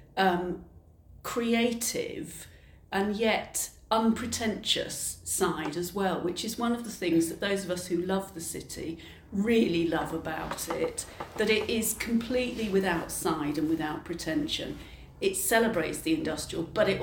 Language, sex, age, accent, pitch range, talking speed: English, female, 40-59, British, 165-230 Hz, 145 wpm